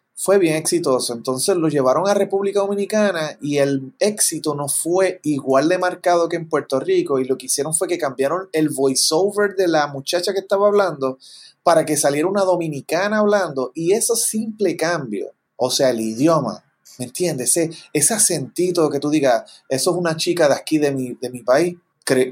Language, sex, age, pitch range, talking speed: Spanish, male, 30-49, 135-185 Hz, 190 wpm